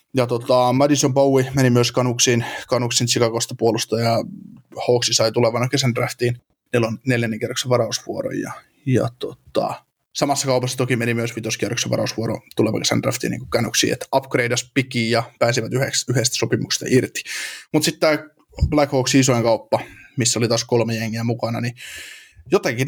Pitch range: 115-135 Hz